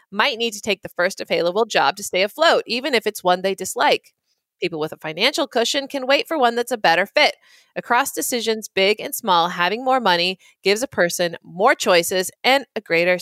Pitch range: 190-275 Hz